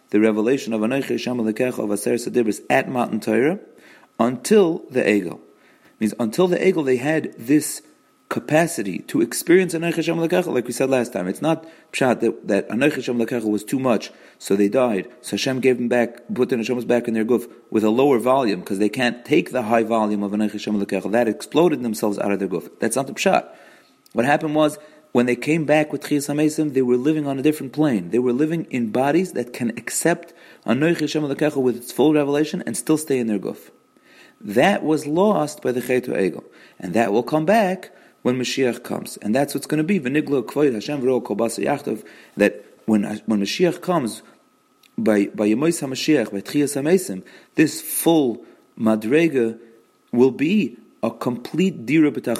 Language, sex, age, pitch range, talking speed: English, male, 40-59, 115-155 Hz, 185 wpm